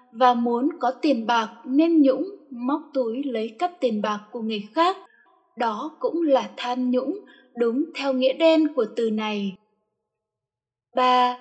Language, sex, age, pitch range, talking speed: Vietnamese, female, 10-29, 230-310 Hz, 155 wpm